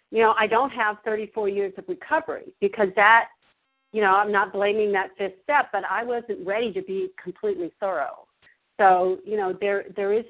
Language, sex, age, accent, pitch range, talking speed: English, female, 50-69, American, 195-245 Hz, 190 wpm